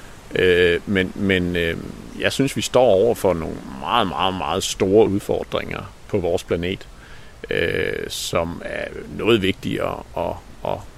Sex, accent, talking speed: male, native, 125 wpm